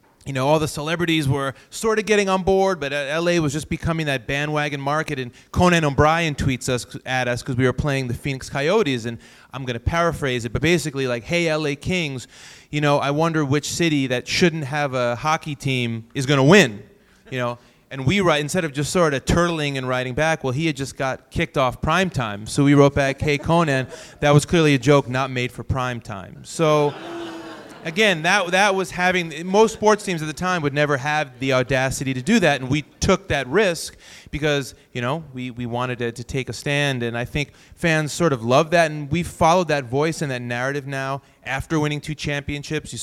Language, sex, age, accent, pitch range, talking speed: English, male, 30-49, American, 125-160 Hz, 220 wpm